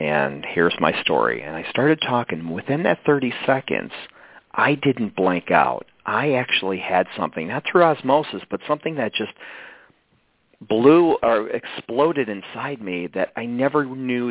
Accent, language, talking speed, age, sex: American, English, 150 wpm, 40-59, male